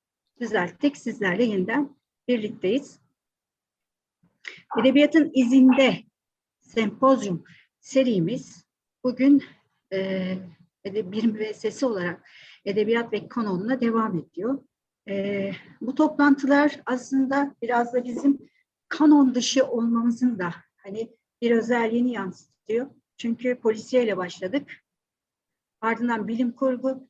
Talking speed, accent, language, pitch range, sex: 90 wpm, native, Turkish, 215-260 Hz, female